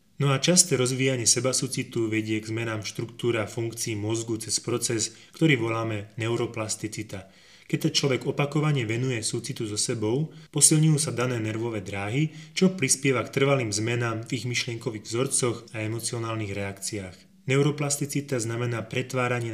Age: 20-39